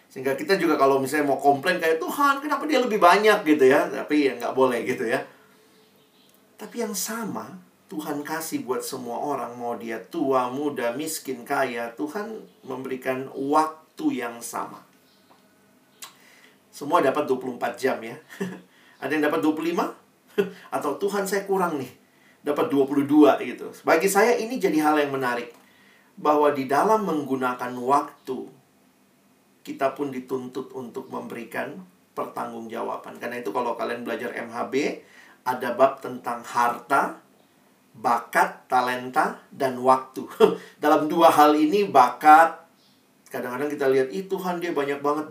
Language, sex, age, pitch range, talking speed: Indonesian, male, 40-59, 130-175 Hz, 135 wpm